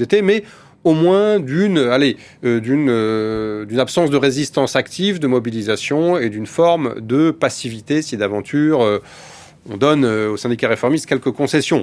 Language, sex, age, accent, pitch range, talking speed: French, male, 30-49, French, 110-140 Hz, 160 wpm